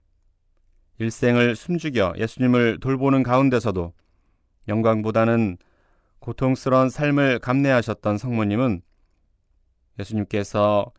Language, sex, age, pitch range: Korean, male, 30-49, 85-125 Hz